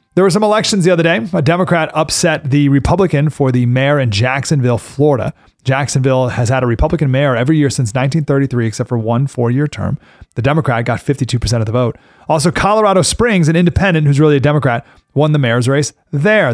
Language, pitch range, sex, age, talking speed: English, 130-180 Hz, male, 30-49, 195 wpm